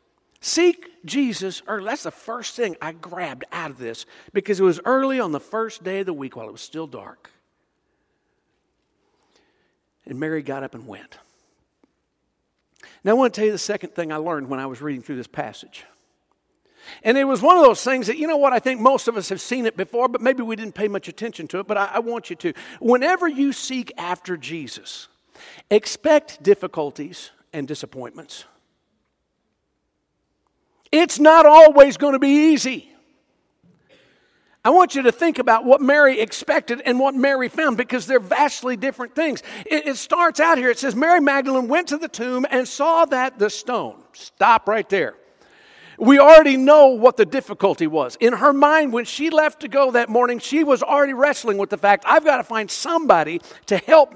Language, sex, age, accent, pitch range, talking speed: English, male, 50-69, American, 205-290 Hz, 190 wpm